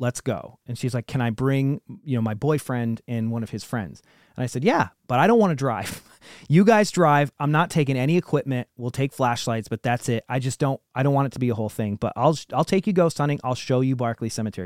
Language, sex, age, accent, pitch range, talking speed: English, male, 30-49, American, 115-150 Hz, 265 wpm